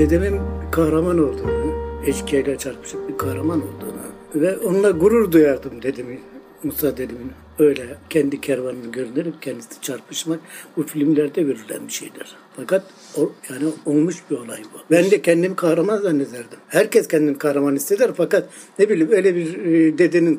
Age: 60-79